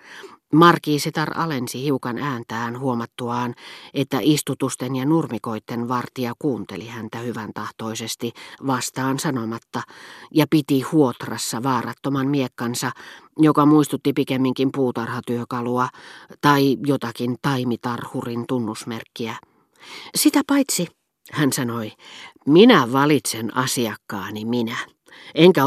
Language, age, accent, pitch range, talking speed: Finnish, 40-59, native, 120-155 Hz, 90 wpm